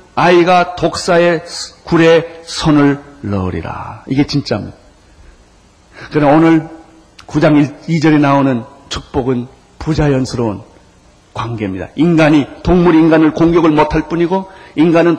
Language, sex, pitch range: Korean, male, 140-210 Hz